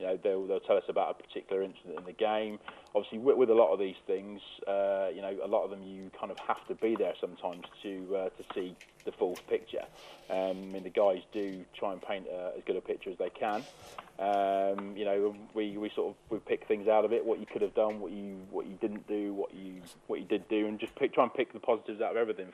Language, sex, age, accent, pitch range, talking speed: English, male, 30-49, British, 100-155 Hz, 270 wpm